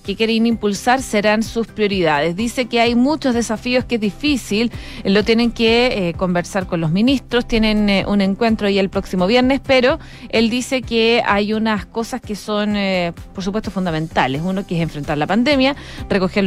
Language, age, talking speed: Spanish, 20-39, 180 wpm